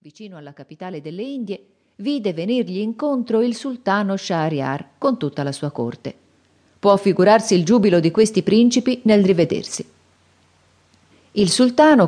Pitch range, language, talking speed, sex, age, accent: 150-210 Hz, Italian, 135 wpm, female, 40-59, native